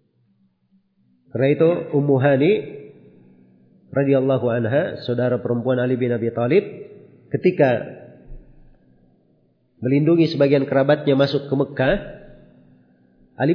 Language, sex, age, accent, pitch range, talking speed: Indonesian, male, 40-59, native, 120-155 Hz, 85 wpm